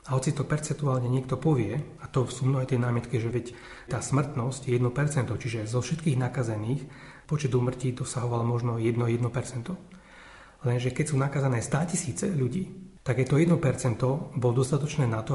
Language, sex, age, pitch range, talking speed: Slovak, male, 30-49, 125-150 Hz, 170 wpm